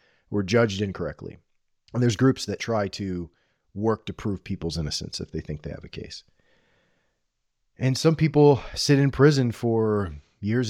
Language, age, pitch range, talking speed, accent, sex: English, 30-49, 95-125 Hz, 165 wpm, American, male